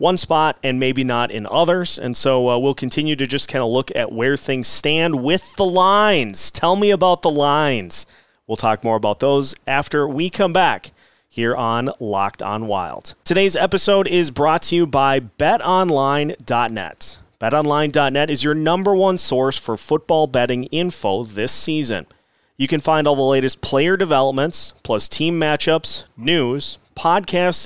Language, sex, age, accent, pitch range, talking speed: English, male, 30-49, American, 130-170 Hz, 165 wpm